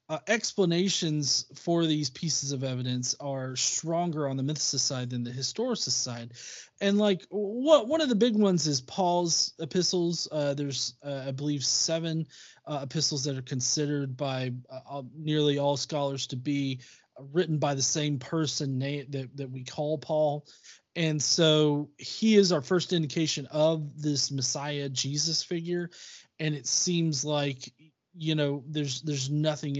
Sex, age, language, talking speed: male, 20-39, English, 155 wpm